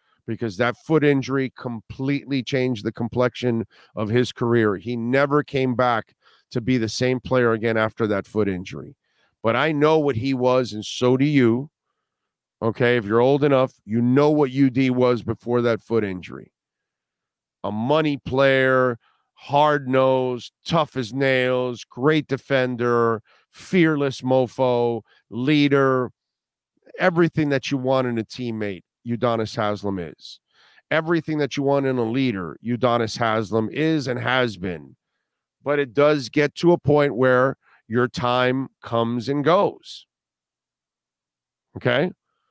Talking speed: 140 wpm